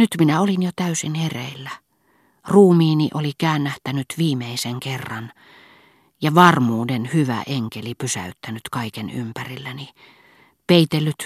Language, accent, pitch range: Finnish, native, 120-150 Hz